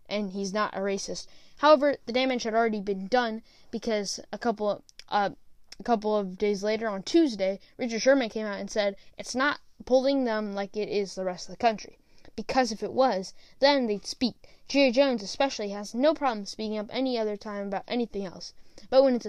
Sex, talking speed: female, 195 wpm